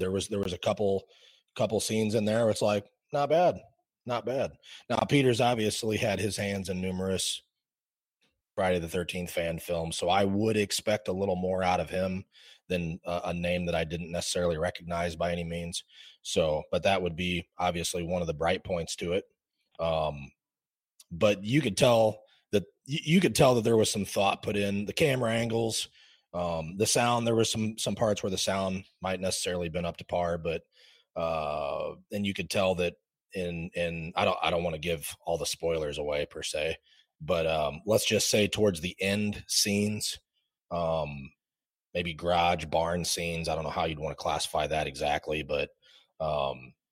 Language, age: English, 30-49